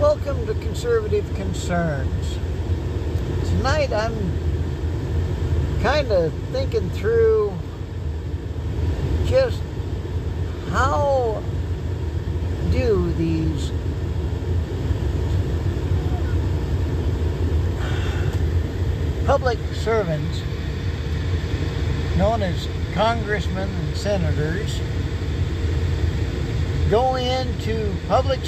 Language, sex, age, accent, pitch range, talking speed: English, male, 60-79, American, 85-95 Hz, 50 wpm